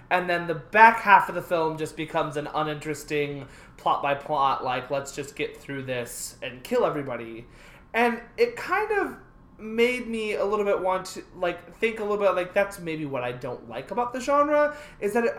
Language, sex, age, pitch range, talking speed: English, male, 20-39, 150-230 Hz, 200 wpm